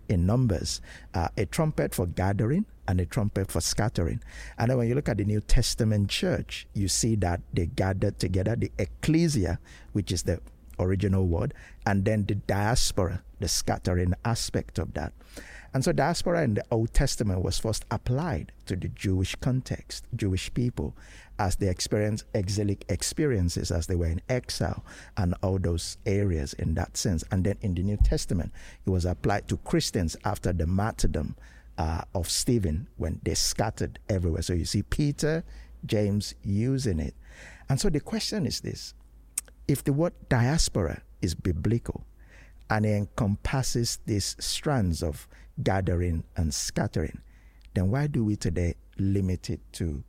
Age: 50-69